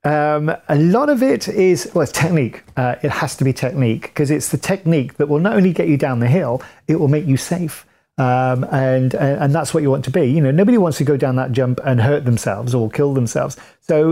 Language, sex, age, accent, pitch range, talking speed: English, male, 40-59, British, 135-170 Hz, 245 wpm